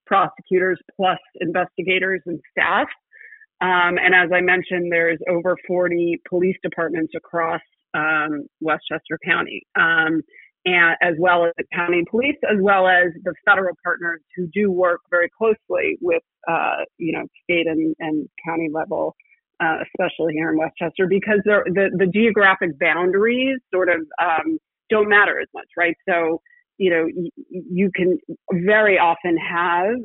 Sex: female